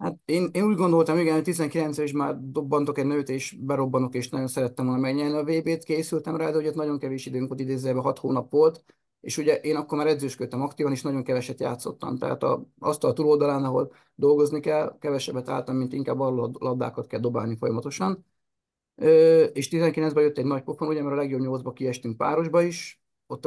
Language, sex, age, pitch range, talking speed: Hungarian, male, 30-49, 130-150 Hz, 200 wpm